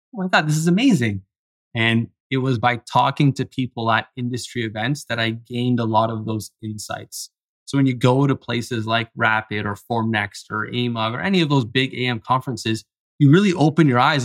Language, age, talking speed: English, 20-39, 200 wpm